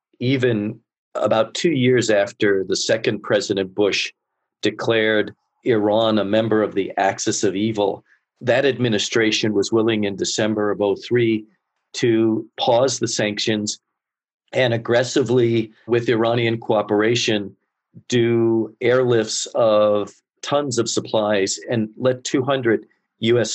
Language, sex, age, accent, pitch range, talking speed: English, male, 50-69, American, 105-115 Hz, 115 wpm